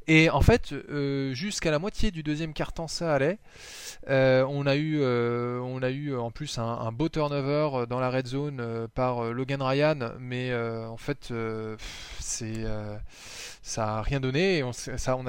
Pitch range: 120-150 Hz